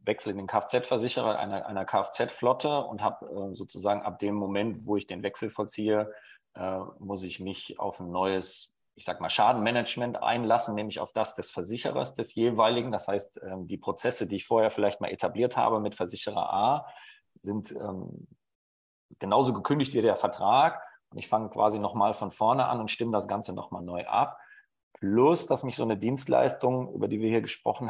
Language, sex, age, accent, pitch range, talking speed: German, male, 40-59, German, 95-115 Hz, 185 wpm